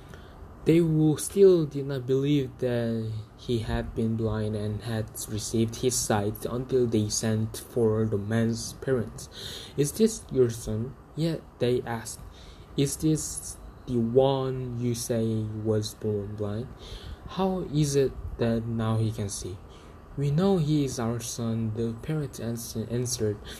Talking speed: 140 wpm